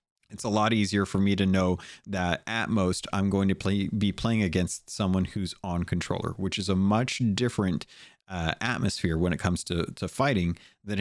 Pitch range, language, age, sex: 90-110 Hz, English, 30-49, male